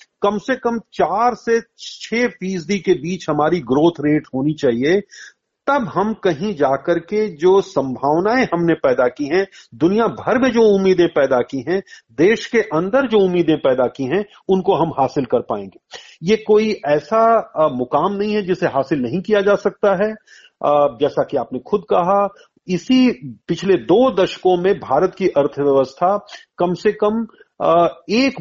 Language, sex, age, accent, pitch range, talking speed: Hindi, male, 40-59, native, 155-210 Hz, 160 wpm